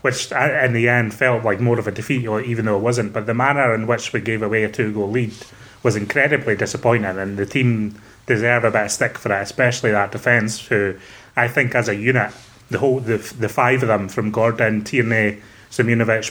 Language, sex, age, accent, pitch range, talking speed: English, male, 30-49, British, 110-125 Hz, 215 wpm